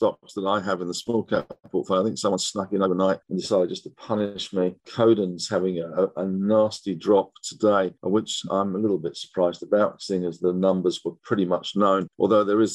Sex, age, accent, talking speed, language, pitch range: male, 50-69, British, 215 wpm, English, 95-110 Hz